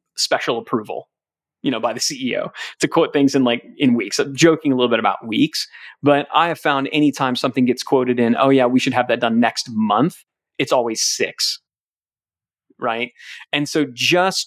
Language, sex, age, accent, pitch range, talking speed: English, male, 30-49, American, 130-180 Hz, 190 wpm